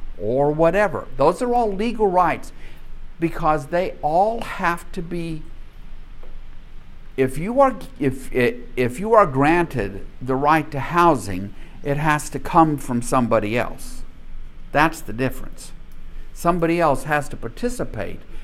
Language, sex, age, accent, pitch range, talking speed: English, male, 50-69, American, 115-150 Hz, 135 wpm